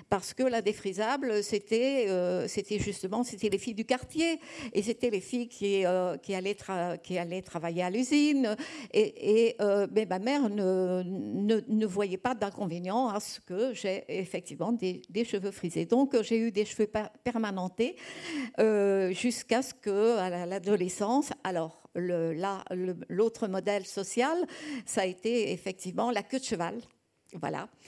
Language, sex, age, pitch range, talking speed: French, female, 60-79, 190-235 Hz, 170 wpm